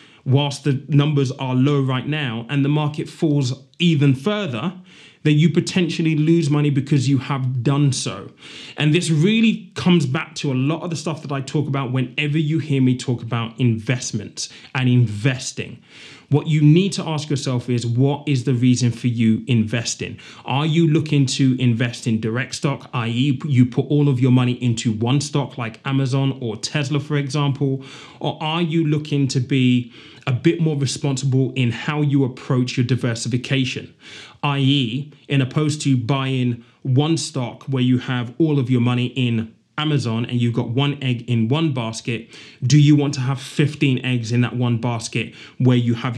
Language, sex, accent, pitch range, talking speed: English, male, British, 125-150 Hz, 180 wpm